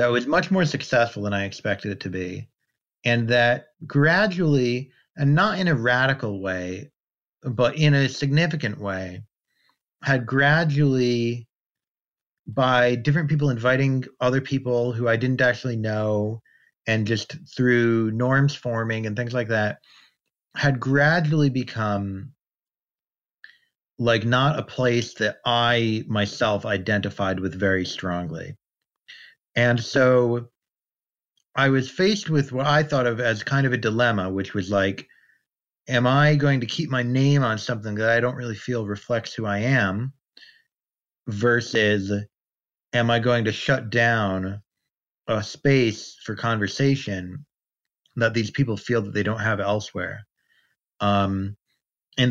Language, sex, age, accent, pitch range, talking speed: English, male, 30-49, American, 105-135 Hz, 135 wpm